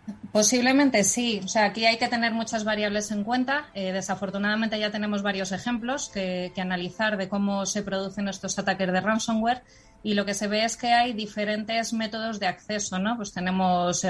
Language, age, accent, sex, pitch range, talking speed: Spanish, 20-39, Spanish, female, 185-220 Hz, 185 wpm